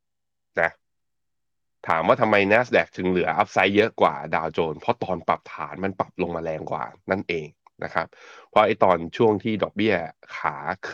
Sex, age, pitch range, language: male, 20-39, 90-110 Hz, Thai